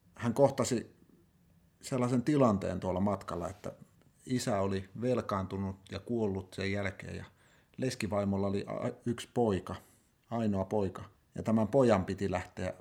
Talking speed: 120 wpm